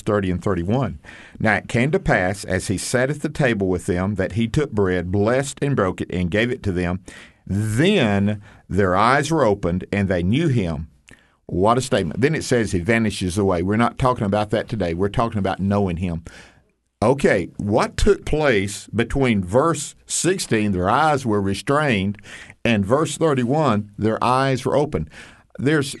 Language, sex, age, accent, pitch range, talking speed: English, male, 50-69, American, 100-145 Hz, 180 wpm